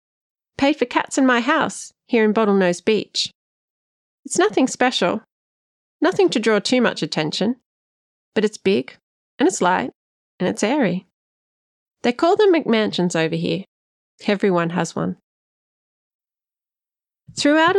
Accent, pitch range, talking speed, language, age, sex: Australian, 190-275 Hz, 130 wpm, English, 30-49, female